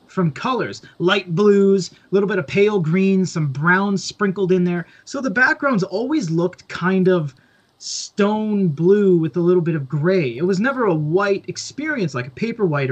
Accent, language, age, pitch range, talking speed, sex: American, English, 20-39, 155-195 Hz, 185 wpm, male